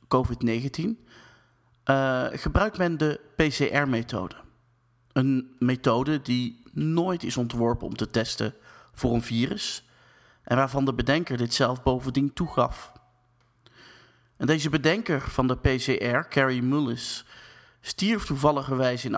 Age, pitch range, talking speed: 30-49, 120-145 Hz, 120 wpm